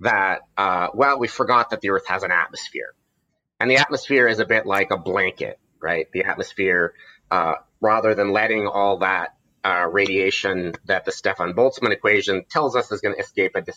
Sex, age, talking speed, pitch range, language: male, 30-49, 185 wpm, 95-130 Hz, English